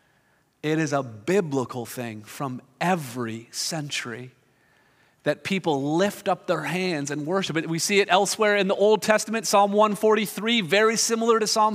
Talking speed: 160 wpm